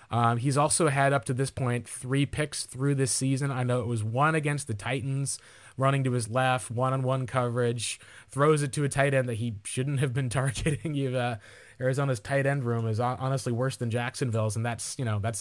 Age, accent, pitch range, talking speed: 20-39, American, 120-150 Hz, 215 wpm